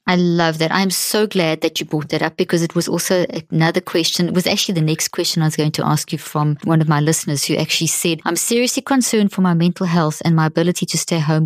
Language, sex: English, female